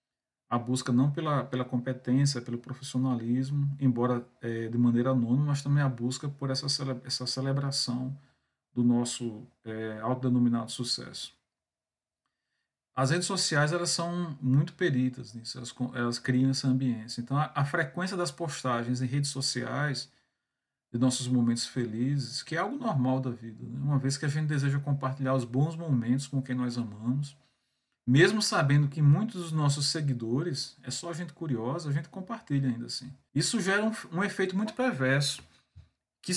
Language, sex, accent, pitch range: Portuguese, male, Brazilian, 125-145 Hz